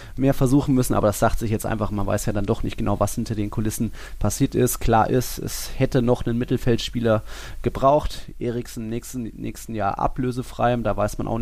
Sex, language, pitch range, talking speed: male, German, 105-120 Hz, 210 wpm